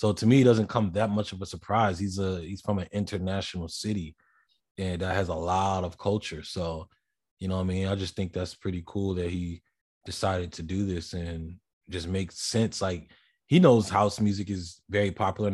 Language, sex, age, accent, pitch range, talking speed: English, male, 20-39, American, 90-105 Hz, 210 wpm